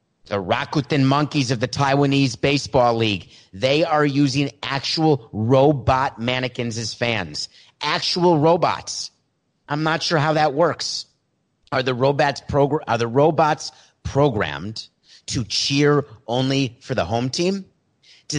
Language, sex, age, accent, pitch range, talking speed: English, male, 30-49, American, 115-150 Hz, 130 wpm